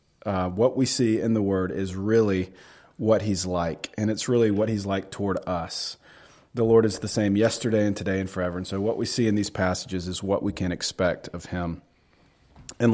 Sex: male